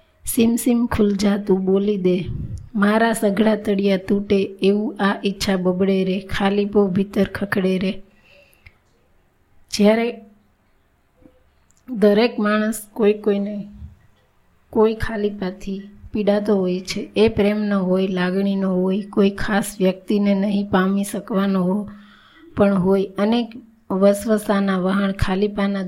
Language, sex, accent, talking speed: Gujarati, female, native, 100 wpm